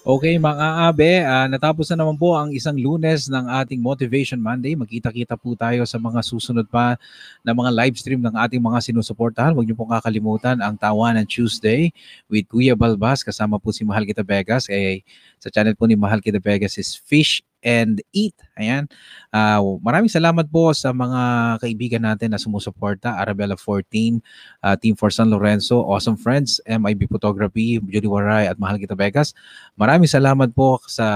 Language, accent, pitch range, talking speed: Filipino, native, 105-130 Hz, 175 wpm